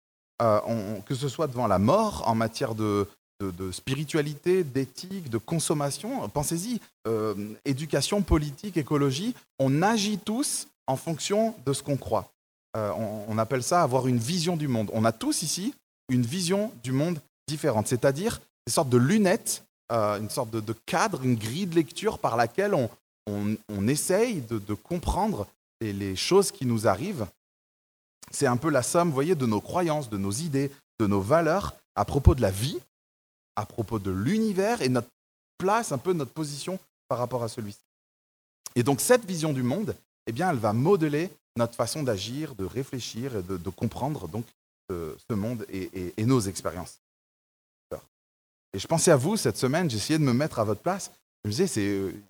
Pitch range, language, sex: 110-165 Hz, French, male